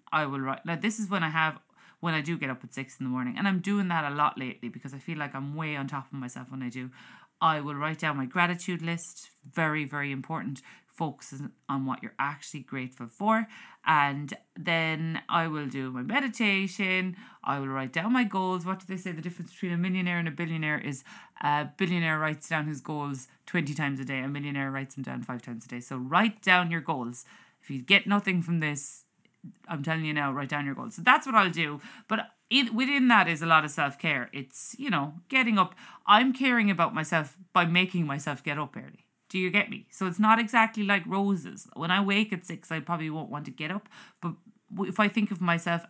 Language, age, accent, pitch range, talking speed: English, 30-49, Irish, 140-190 Hz, 230 wpm